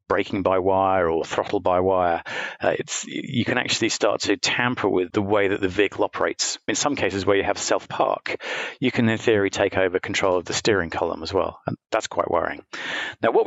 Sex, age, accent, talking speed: male, 40-59, British, 210 wpm